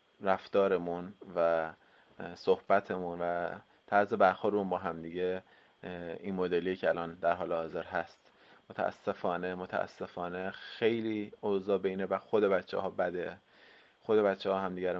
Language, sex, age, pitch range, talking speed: English, male, 20-39, 90-100 Hz, 125 wpm